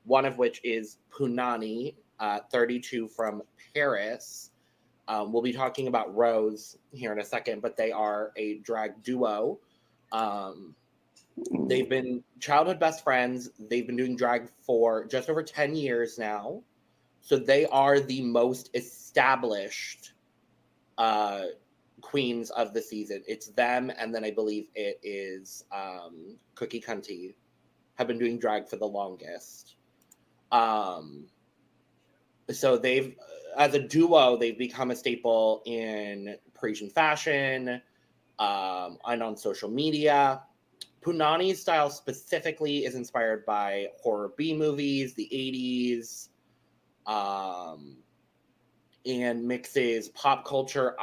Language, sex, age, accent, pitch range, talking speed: English, male, 20-39, American, 110-130 Hz, 120 wpm